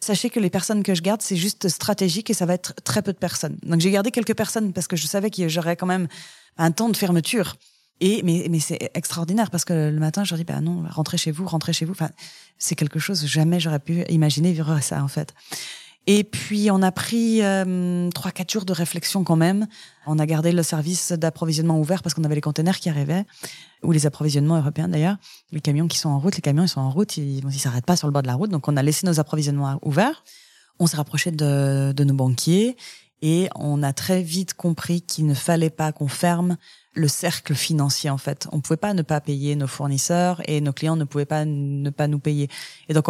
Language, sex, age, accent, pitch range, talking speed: French, female, 20-39, French, 150-185 Hz, 240 wpm